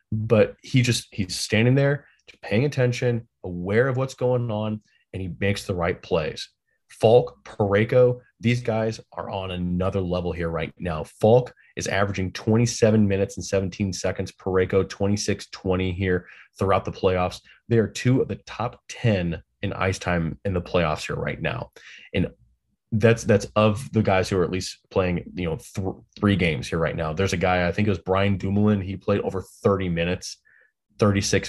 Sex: male